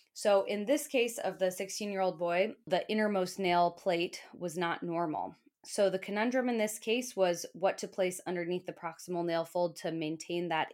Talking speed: 185 wpm